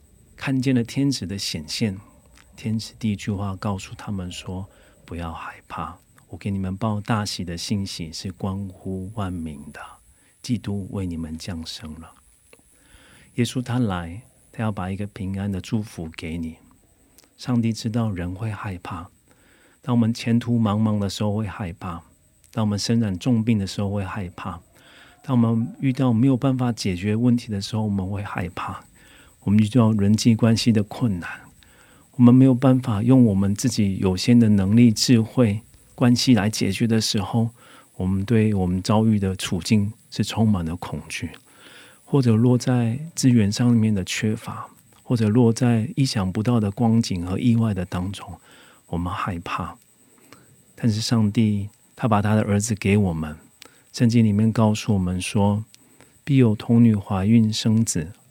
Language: Korean